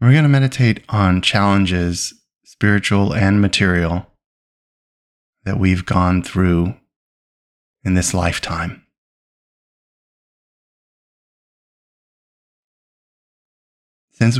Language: English